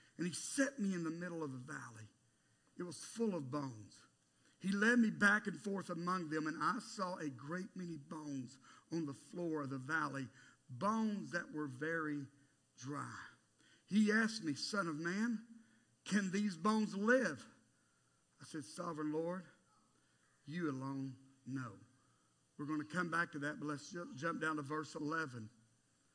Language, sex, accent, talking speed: English, male, American, 165 wpm